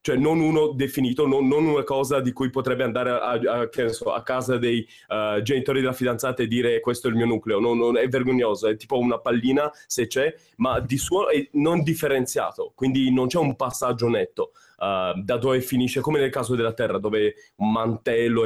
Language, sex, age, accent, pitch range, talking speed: Italian, male, 20-39, native, 125-190 Hz, 190 wpm